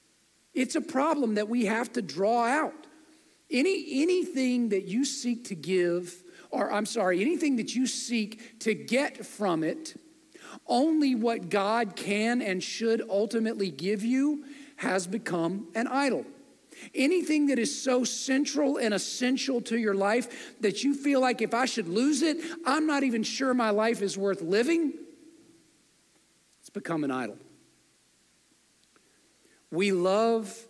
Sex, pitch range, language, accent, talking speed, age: male, 170-260 Hz, English, American, 145 wpm, 50-69